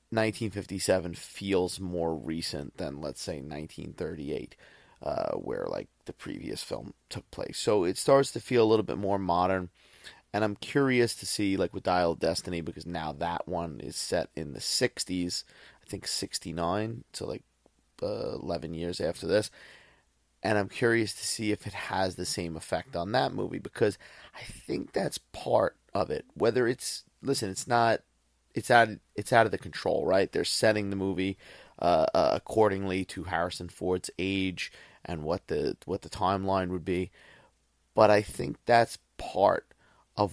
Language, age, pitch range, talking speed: English, 30-49, 85-105 Hz, 170 wpm